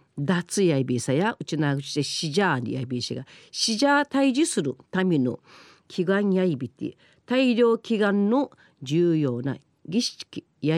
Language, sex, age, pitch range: Japanese, female, 40-59, 150-250 Hz